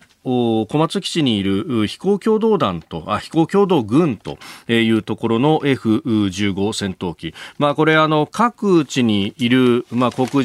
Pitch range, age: 105-150 Hz, 40-59